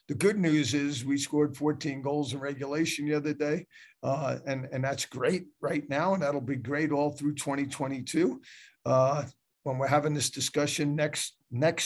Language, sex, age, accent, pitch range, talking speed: English, male, 50-69, American, 135-155 Hz, 175 wpm